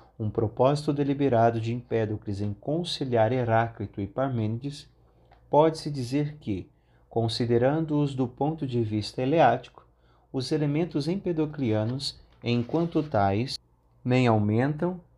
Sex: male